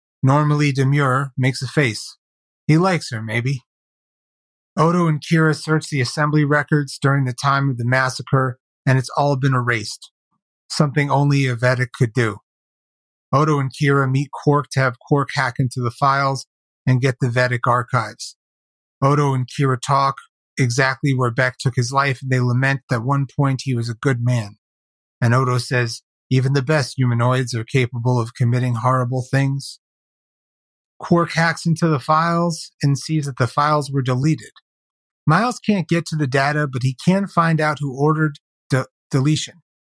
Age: 30-49